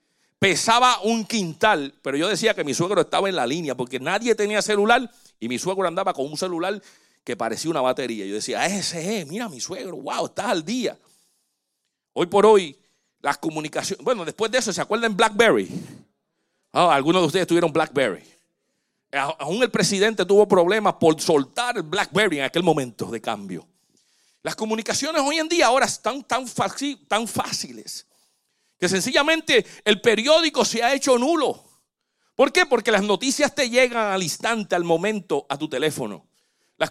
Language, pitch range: Spanish, 175-235 Hz